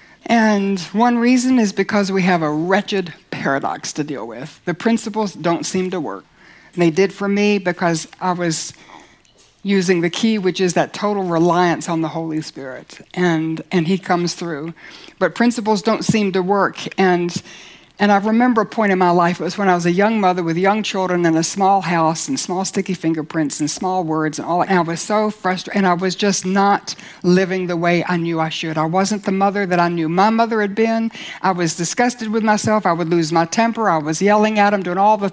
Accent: American